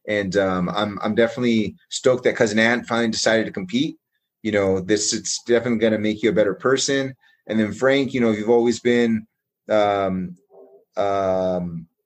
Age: 30-49